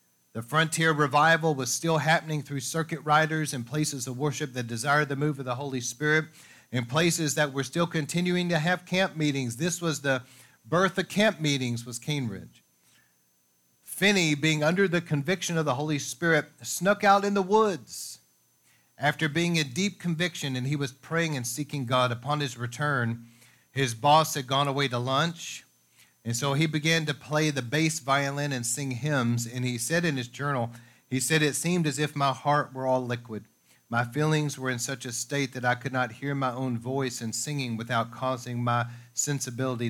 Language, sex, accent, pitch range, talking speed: English, male, American, 125-155 Hz, 190 wpm